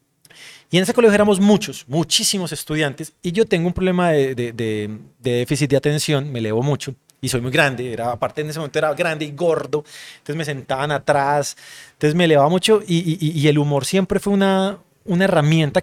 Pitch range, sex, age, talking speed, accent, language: 140-190 Hz, male, 30-49, 205 wpm, Colombian, Spanish